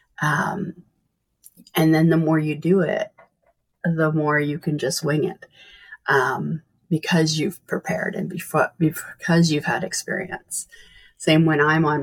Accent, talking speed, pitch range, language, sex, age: American, 145 wpm, 155-190 Hz, English, female, 30-49